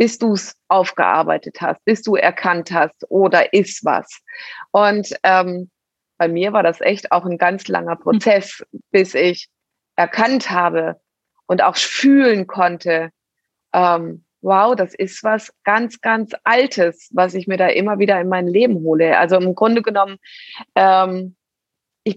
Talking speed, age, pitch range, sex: 150 wpm, 30-49, 180-215 Hz, female